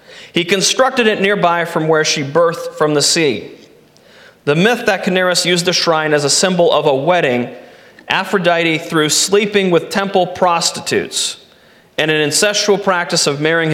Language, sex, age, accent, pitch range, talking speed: English, male, 40-59, American, 150-200 Hz, 155 wpm